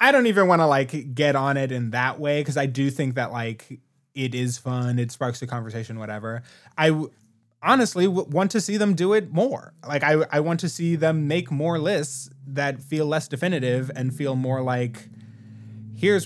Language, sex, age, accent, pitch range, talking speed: English, male, 20-39, American, 125-160 Hz, 210 wpm